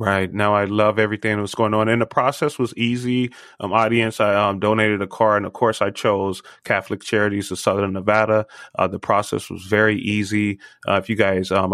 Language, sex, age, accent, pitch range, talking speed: English, male, 30-49, American, 95-110 Hz, 215 wpm